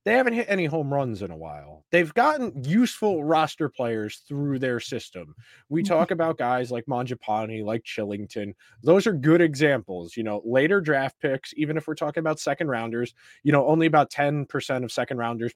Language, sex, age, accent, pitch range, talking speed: English, male, 20-39, American, 120-175 Hz, 190 wpm